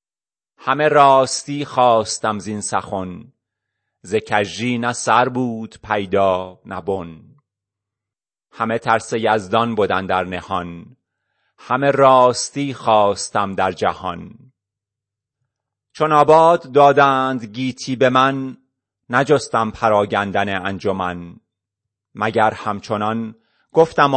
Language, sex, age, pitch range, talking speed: Persian, male, 30-49, 105-125 Hz, 85 wpm